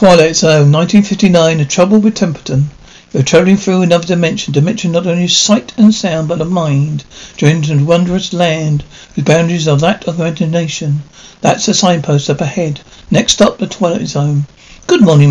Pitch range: 155-200 Hz